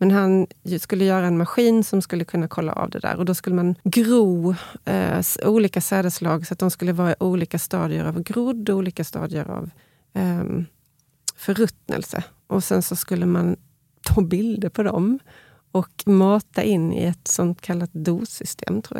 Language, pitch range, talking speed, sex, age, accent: Swedish, 175-210 Hz, 165 wpm, female, 30-49, native